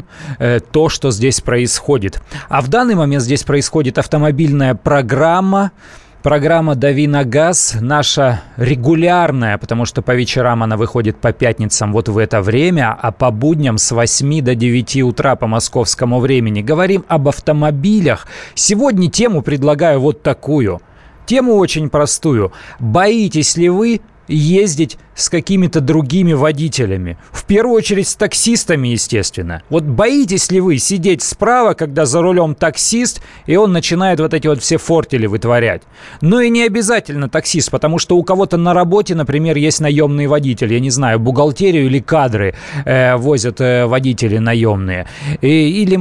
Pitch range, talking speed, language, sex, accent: 125-170 Hz, 140 wpm, Russian, male, native